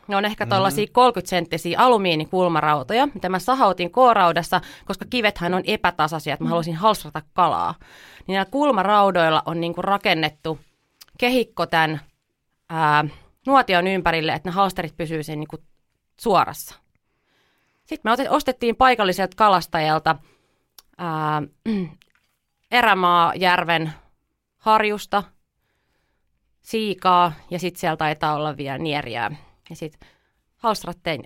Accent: native